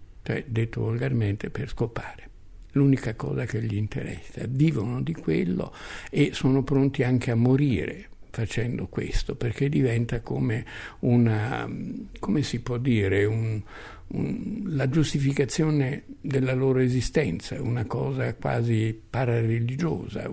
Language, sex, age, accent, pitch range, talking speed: Italian, male, 60-79, native, 105-135 Hz, 120 wpm